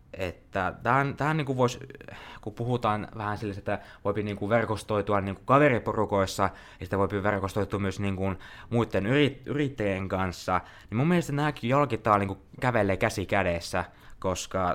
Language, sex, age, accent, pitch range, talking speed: Finnish, male, 20-39, native, 95-115 Hz, 140 wpm